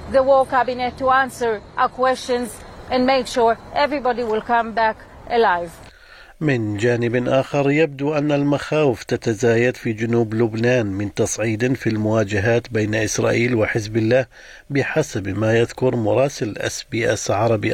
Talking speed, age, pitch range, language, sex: 140 wpm, 50-69, 120-195 Hz, Arabic, male